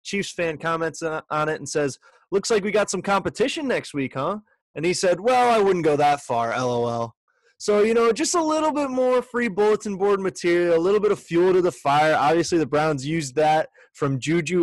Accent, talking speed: American, 220 wpm